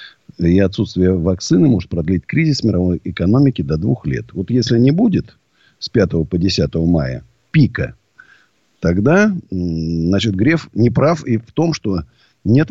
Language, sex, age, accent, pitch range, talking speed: Russian, male, 50-69, native, 95-140 Hz, 145 wpm